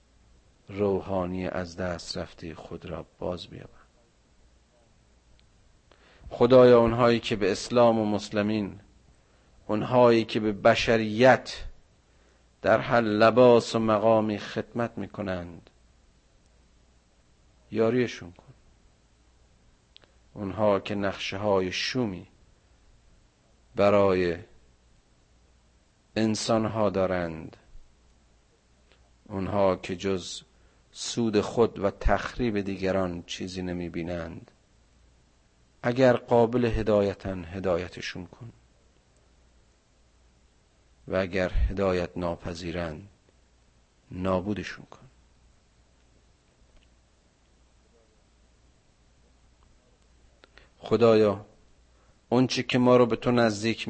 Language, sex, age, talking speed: Persian, male, 50-69, 75 wpm